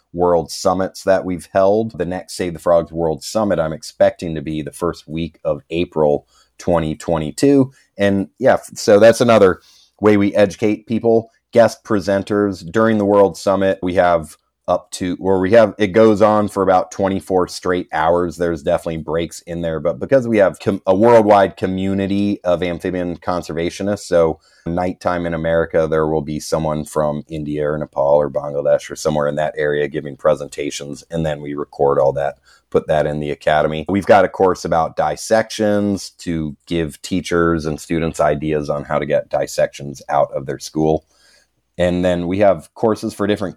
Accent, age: American, 30-49